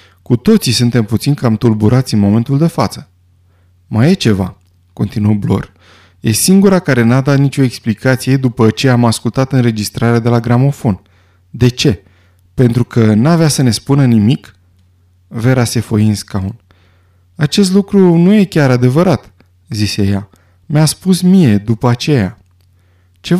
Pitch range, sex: 95-135 Hz, male